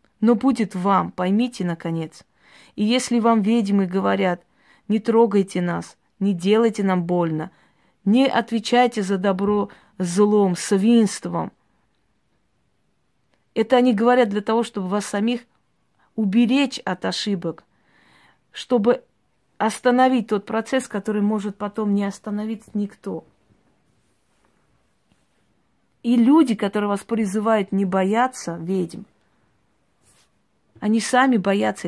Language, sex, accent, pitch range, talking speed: Russian, female, native, 195-235 Hz, 105 wpm